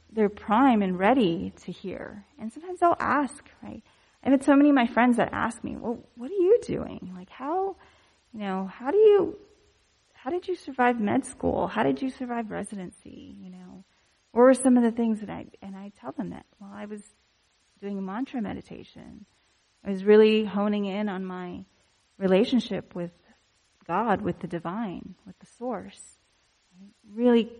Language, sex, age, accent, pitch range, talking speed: English, female, 30-49, American, 185-255 Hz, 180 wpm